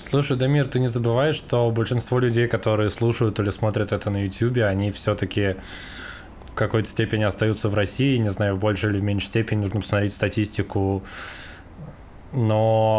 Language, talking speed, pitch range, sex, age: Russian, 155 wpm, 100-115 Hz, male, 20-39